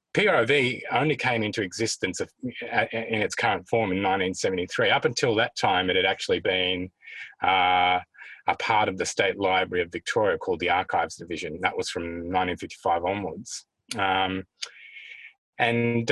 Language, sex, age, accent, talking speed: English, male, 30-49, Australian, 145 wpm